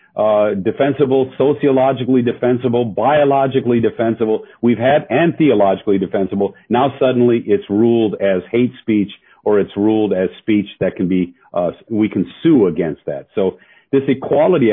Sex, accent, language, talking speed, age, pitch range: male, American, English, 145 wpm, 50-69, 100-130 Hz